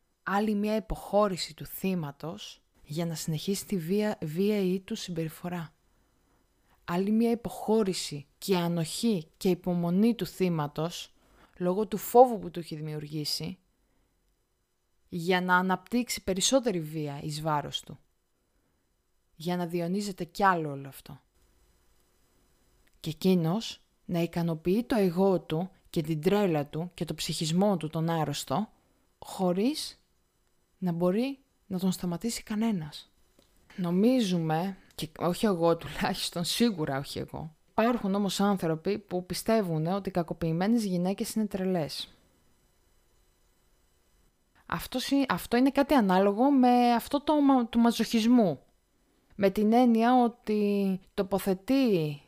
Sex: female